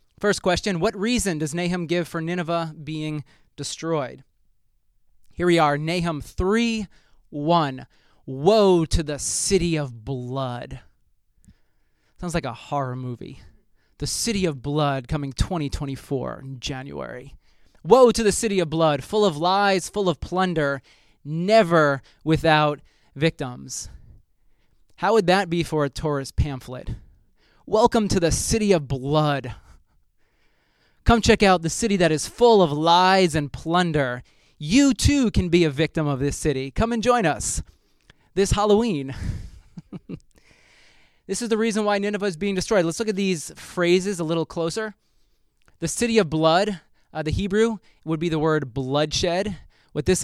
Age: 20-39